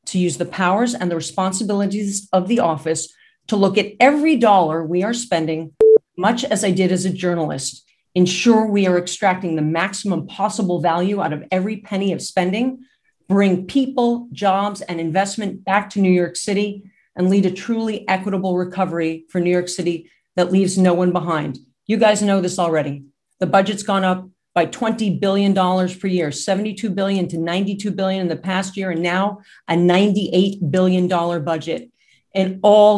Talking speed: 175 wpm